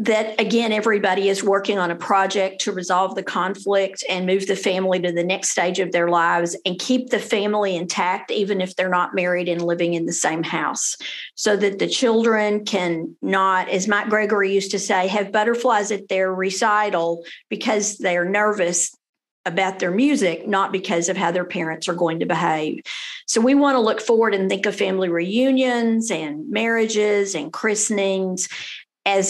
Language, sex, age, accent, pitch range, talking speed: English, female, 50-69, American, 185-225 Hz, 180 wpm